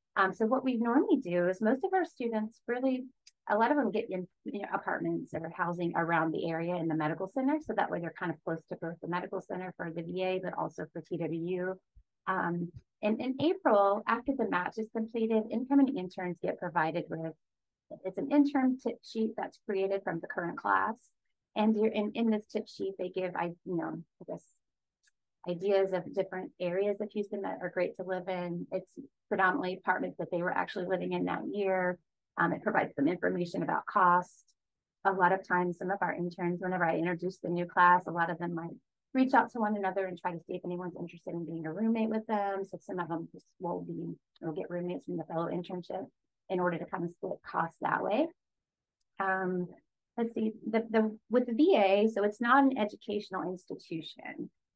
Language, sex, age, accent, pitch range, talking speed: English, female, 30-49, American, 175-220 Hz, 210 wpm